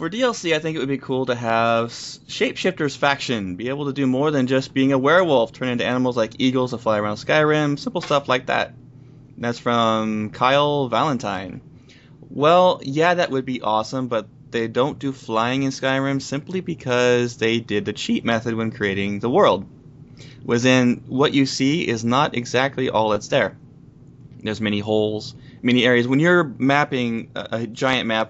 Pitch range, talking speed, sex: 110-135 Hz, 180 wpm, male